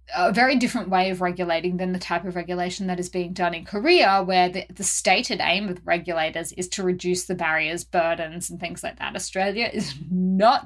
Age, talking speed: 20-39, 210 wpm